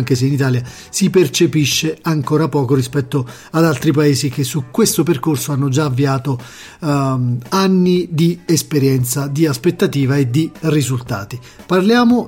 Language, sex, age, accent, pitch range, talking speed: Italian, male, 40-59, native, 135-170 Hz, 140 wpm